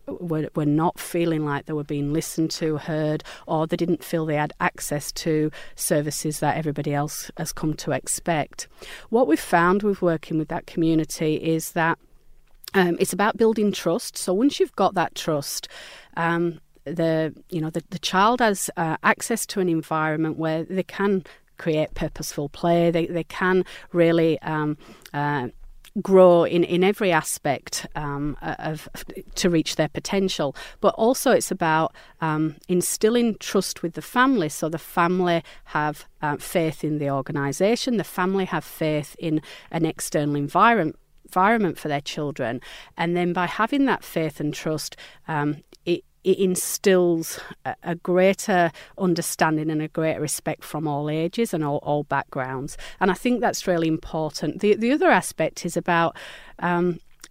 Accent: British